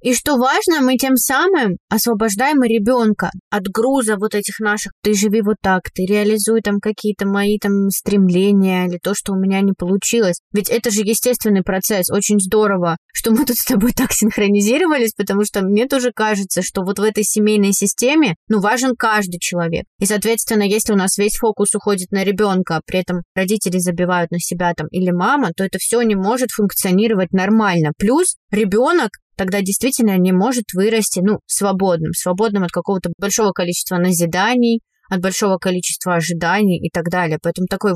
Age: 20-39